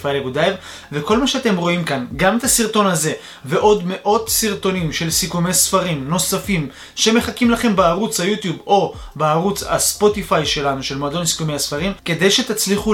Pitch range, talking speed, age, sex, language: 150-200 Hz, 140 wpm, 20-39, male, Hebrew